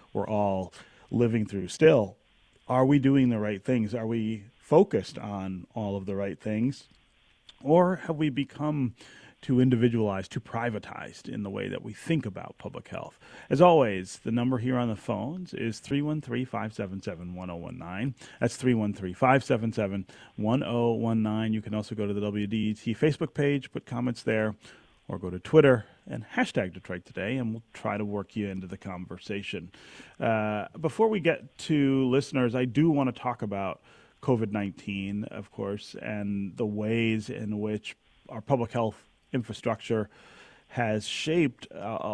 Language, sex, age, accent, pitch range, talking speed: English, male, 40-59, American, 105-130 Hz, 150 wpm